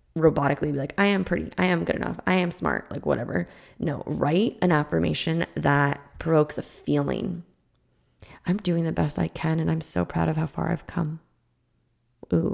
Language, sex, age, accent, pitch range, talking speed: English, female, 20-39, American, 140-175 Hz, 185 wpm